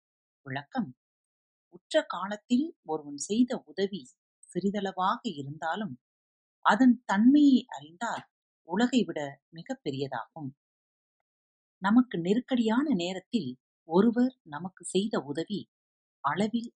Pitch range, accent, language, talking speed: 140-220 Hz, native, Tamil, 75 wpm